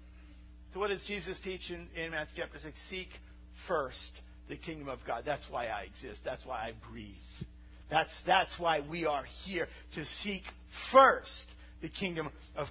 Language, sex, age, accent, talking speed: English, male, 50-69, American, 170 wpm